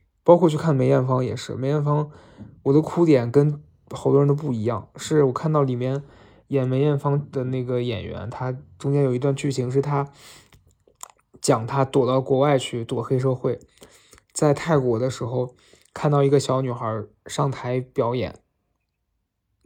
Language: Chinese